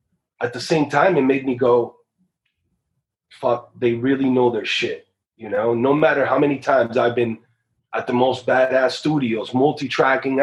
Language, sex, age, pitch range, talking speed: English, male, 30-49, 120-175 Hz, 165 wpm